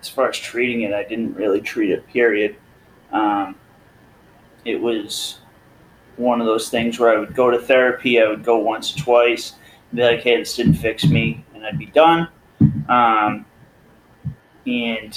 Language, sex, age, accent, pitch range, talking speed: English, male, 30-49, American, 105-125 Hz, 165 wpm